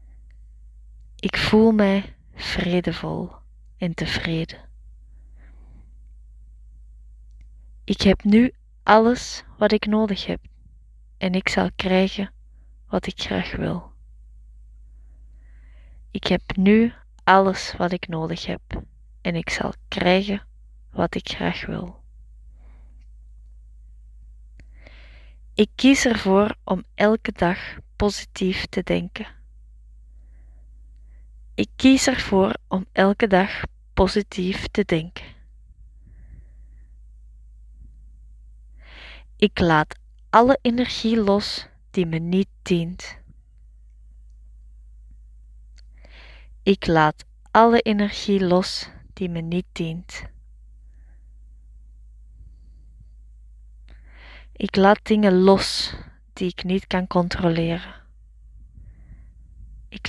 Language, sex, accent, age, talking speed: Dutch, female, Dutch, 20-39, 85 wpm